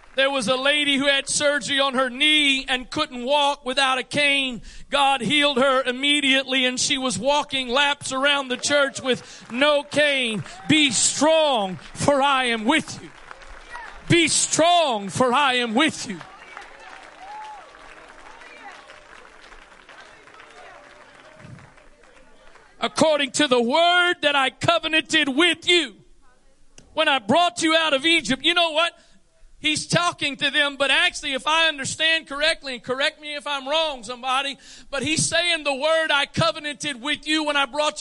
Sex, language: male, English